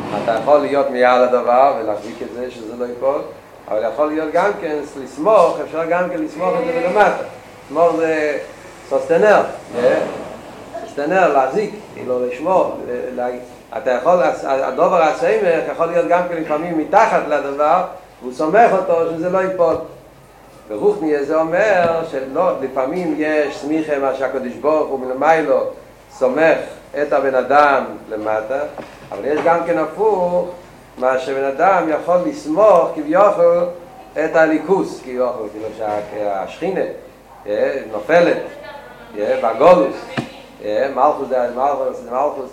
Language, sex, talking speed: Hebrew, male, 105 wpm